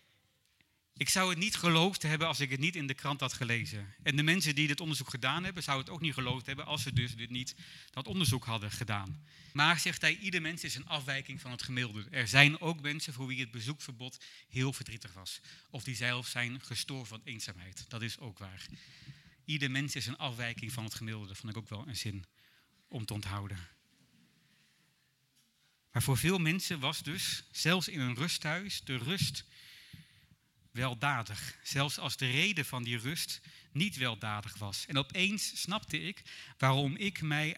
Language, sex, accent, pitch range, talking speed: Dutch, male, Dutch, 120-160 Hz, 190 wpm